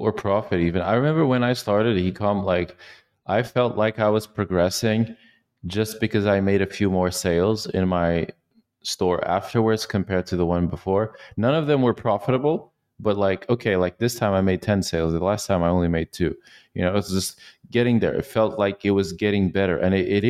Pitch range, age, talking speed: 90-110 Hz, 30-49, 215 wpm